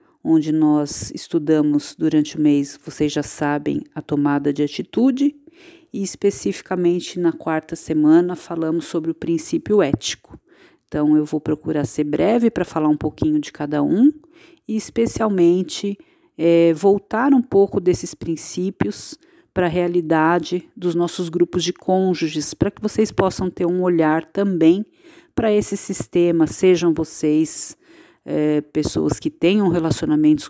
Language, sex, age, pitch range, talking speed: Portuguese, female, 40-59, 155-215 Hz, 135 wpm